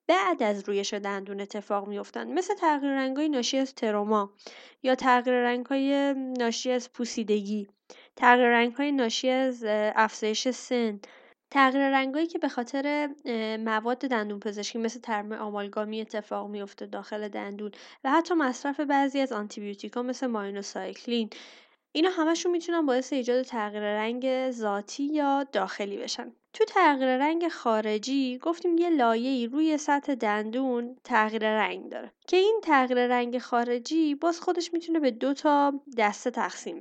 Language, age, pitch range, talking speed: Persian, 20-39, 215-285 Hz, 150 wpm